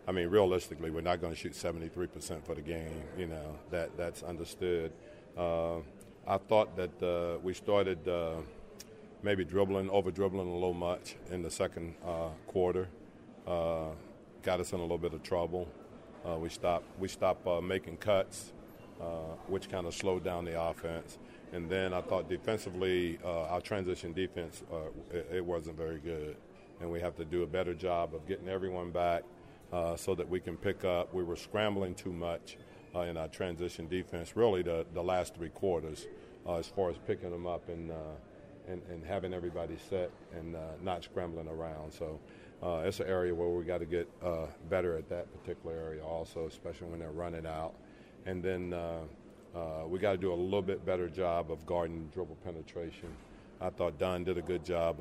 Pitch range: 85-90 Hz